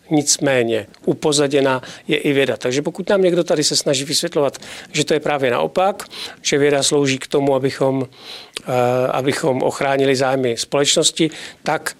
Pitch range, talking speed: 140-170 Hz, 145 wpm